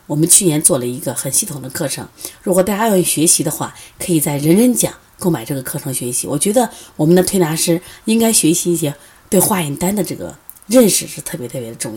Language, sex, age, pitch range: Chinese, female, 30-49, 160-250 Hz